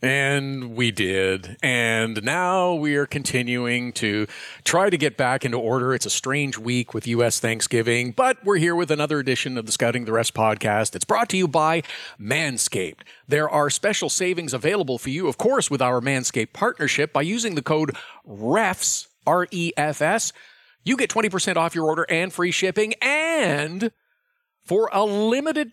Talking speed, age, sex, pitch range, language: 170 wpm, 50-69, male, 130-200 Hz, English